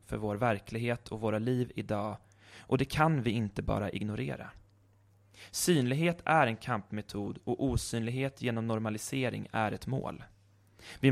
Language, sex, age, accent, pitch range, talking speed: Swedish, male, 20-39, native, 100-125 Hz, 140 wpm